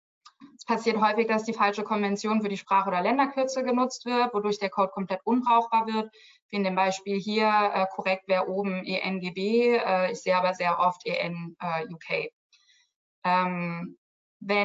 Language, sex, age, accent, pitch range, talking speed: German, female, 20-39, German, 190-220 Hz, 165 wpm